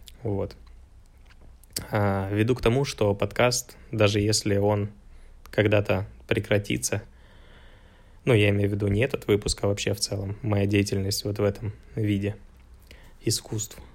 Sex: male